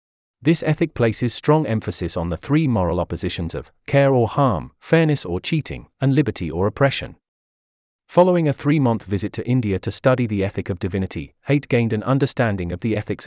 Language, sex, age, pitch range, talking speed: English, male, 40-59, 95-135 Hz, 185 wpm